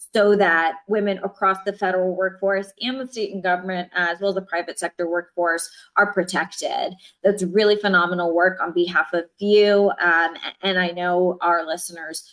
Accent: American